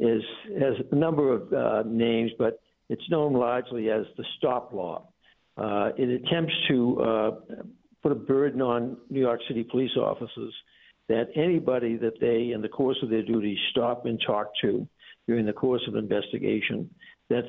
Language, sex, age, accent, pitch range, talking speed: English, male, 60-79, American, 110-130 Hz, 170 wpm